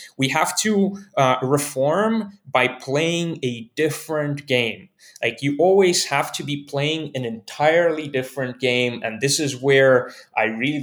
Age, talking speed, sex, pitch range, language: 20-39, 150 wpm, male, 125-160 Hz, English